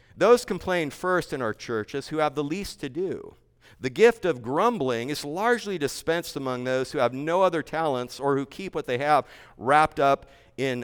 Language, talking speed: English, 195 wpm